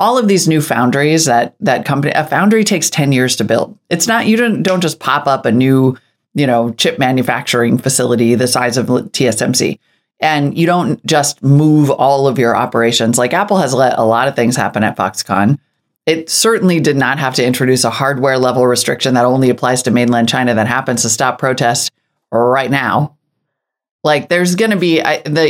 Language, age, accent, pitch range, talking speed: English, 30-49, American, 125-175 Hz, 200 wpm